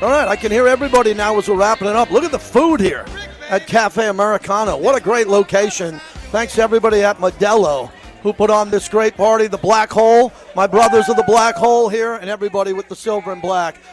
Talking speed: 225 wpm